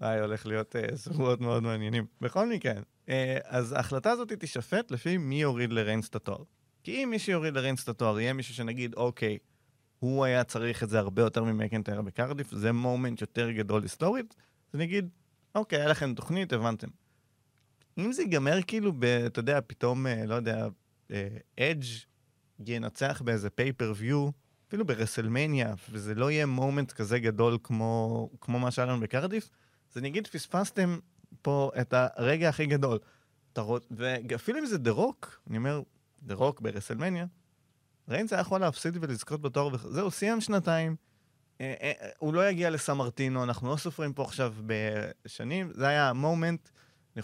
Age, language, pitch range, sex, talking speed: 30-49, Hebrew, 115-150 Hz, male, 150 wpm